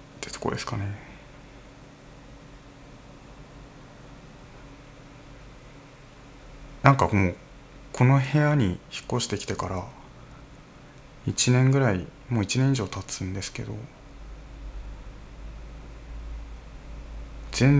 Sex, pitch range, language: male, 115-140 Hz, Japanese